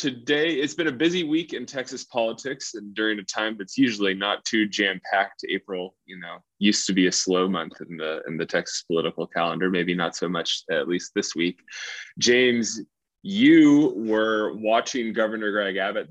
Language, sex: English, male